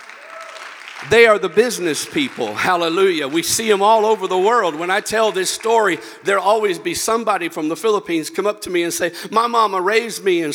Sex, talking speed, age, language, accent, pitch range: male, 210 wpm, 50-69, English, American, 180-240 Hz